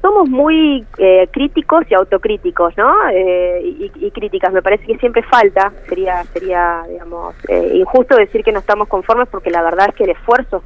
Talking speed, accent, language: 190 wpm, Argentinian, Spanish